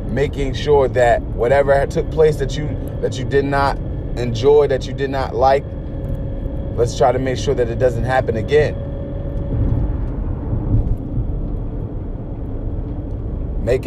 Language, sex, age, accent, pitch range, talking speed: English, male, 30-49, American, 110-140 Hz, 120 wpm